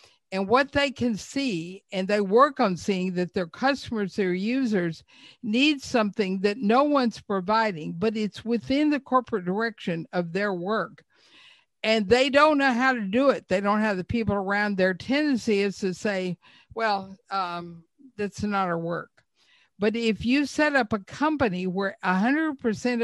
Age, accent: 60-79, American